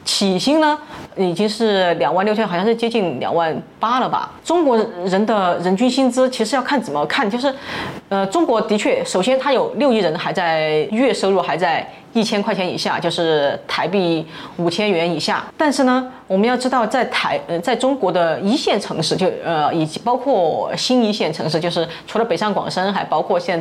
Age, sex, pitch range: 20-39, female, 170-230 Hz